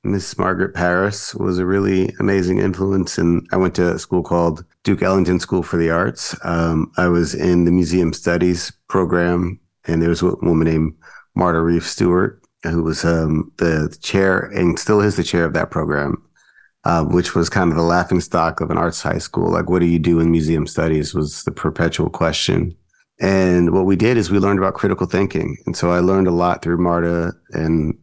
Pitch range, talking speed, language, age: 80-90 Hz, 205 wpm, English, 40-59